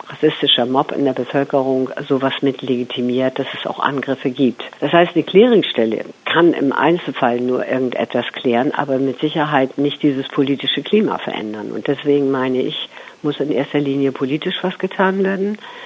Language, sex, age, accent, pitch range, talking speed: German, female, 50-69, German, 130-160 Hz, 165 wpm